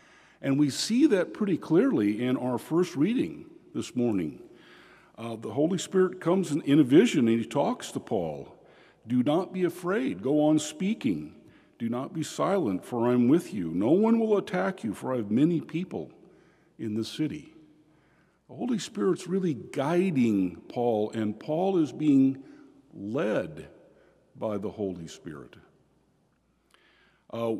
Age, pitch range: 50-69, 120-175 Hz